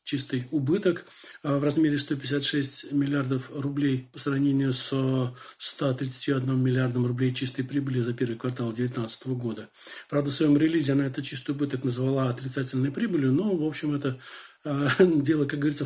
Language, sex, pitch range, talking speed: Turkish, male, 135-155 Hz, 145 wpm